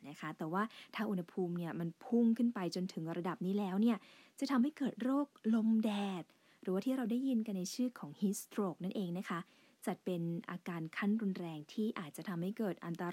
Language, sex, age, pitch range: English, female, 20-39, 180-245 Hz